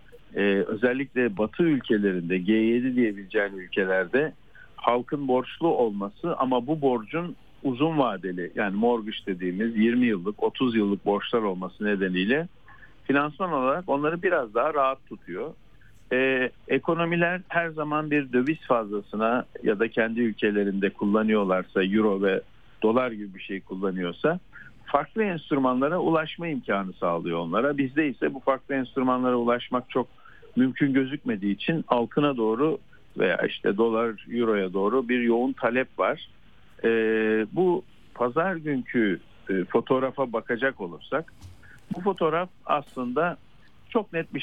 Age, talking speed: 50-69, 125 wpm